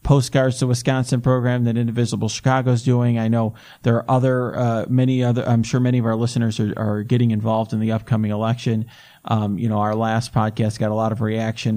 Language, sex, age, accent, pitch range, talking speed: English, male, 40-59, American, 110-140 Hz, 215 wpm